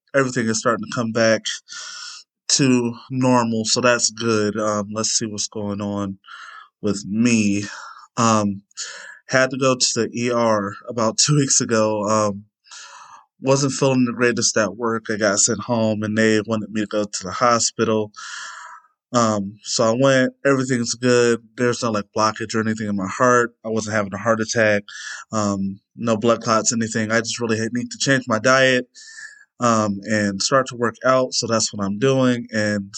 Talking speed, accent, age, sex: 175 wpm, American, 20-39, male